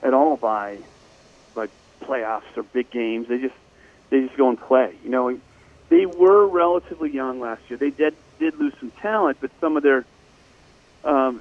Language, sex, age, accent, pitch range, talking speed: English, male, 40-59, American, 120-150 Hz, 180 wpm